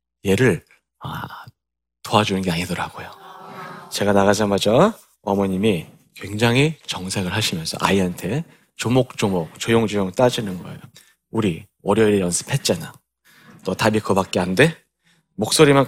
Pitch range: 95-140 Hz